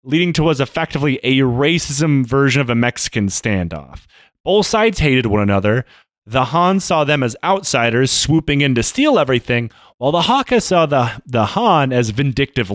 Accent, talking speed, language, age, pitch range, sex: American, 170 wpm, English, 30-49, 120-170 Hz, male